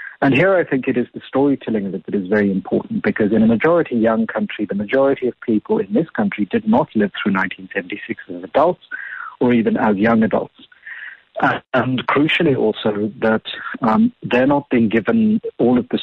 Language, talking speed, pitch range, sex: English, 195 wpm, 105-170 Hz, male